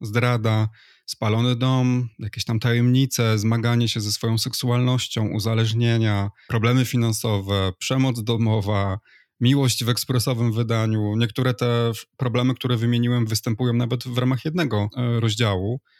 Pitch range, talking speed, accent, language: 110-130 Hz, 115 wpm, native, Polish